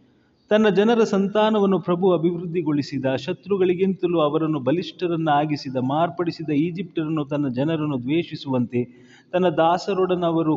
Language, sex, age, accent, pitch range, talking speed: Kannada, male, 30-49, native, 125-170 Hz, 85 wpm